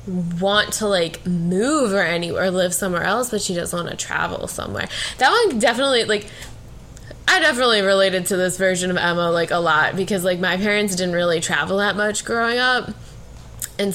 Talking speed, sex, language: 190 wpm, female, English